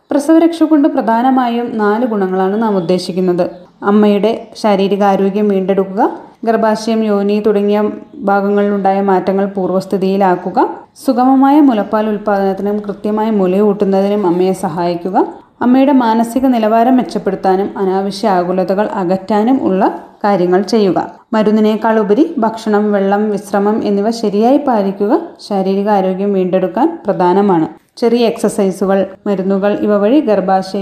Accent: native